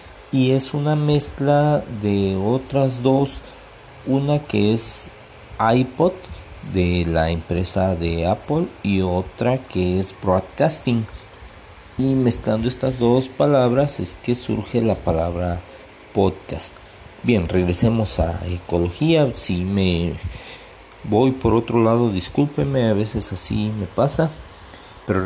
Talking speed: 115 wpm